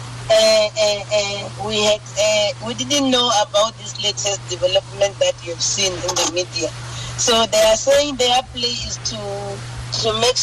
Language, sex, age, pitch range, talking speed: English, female, 40-59, 150-185 Hz, 175 wpm